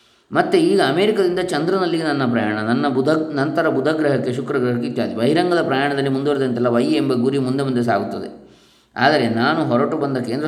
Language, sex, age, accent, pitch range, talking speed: Kannada, male, 20-39, native, 115-145 Hz, 150 wpm